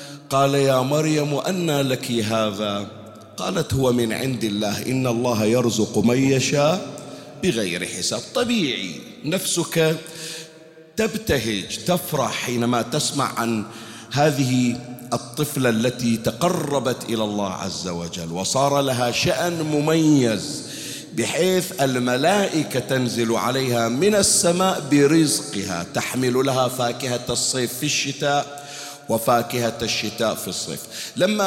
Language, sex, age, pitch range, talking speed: Arabic, male, 50-69, 115-155 Hz, 105 wpm